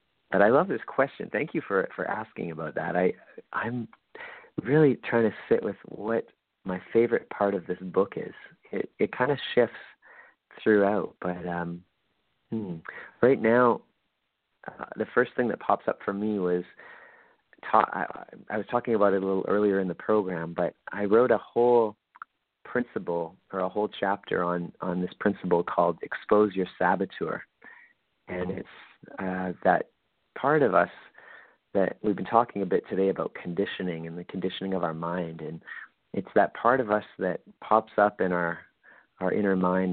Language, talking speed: English, 170 wpm